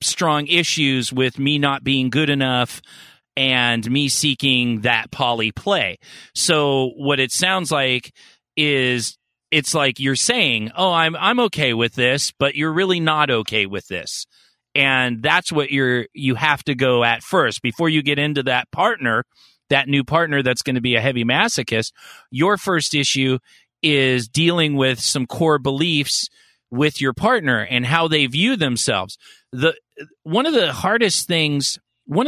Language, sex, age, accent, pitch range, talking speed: English, male, 40-59, American, 125-165 Hz, 160 wpm